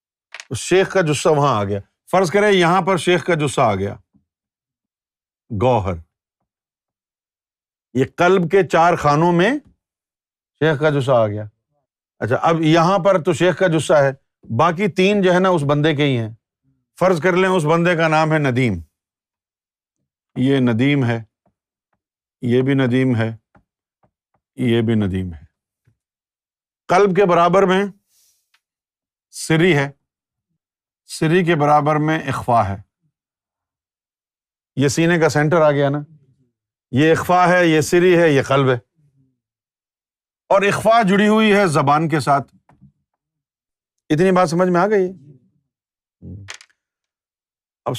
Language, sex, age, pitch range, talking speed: Urdu, male, 50-69, 120-180 Hz, 135 wpm